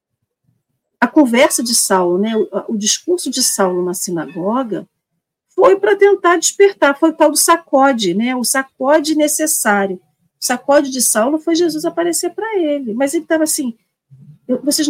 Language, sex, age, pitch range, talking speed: Portuguese, female, 50-69, 200-295 Hz, 155 wpm